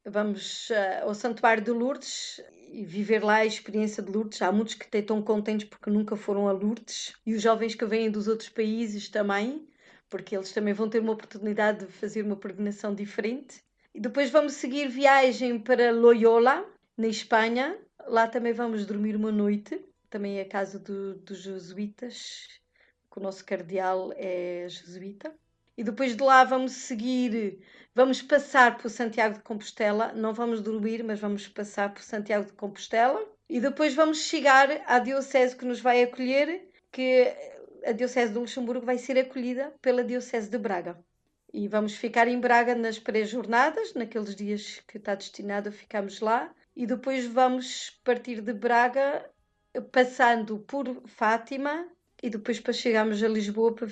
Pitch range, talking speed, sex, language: 210-255 Hz, 165 wpm, female, Portuguese